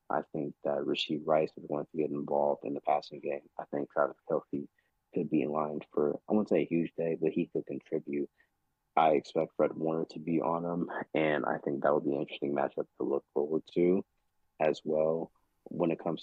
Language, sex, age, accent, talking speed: English, male, 30-49, American, 220 wpm